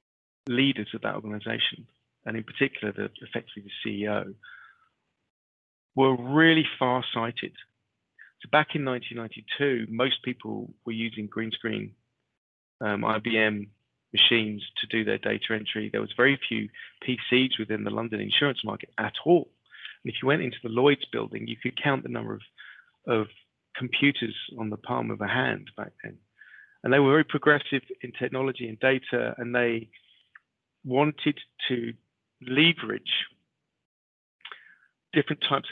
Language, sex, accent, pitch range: English, male, British, 110-130 Hz